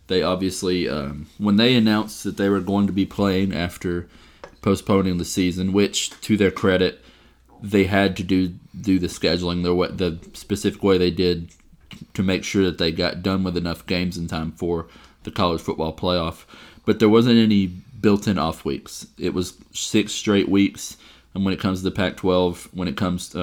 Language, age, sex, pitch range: English, 30-49, male, 85-100 Hz